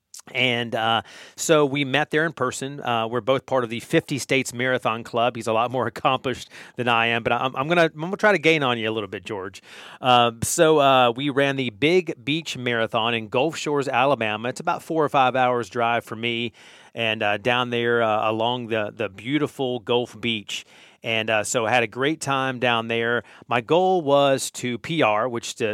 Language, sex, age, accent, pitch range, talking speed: English, male, 40-59, American, 115-140 Hz, 210 wpm